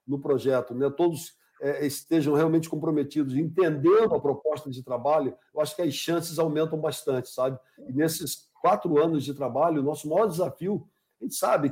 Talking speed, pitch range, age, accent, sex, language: 175 wpm, 140-175 Hz, 60-79, Brazilian, male, Portuguese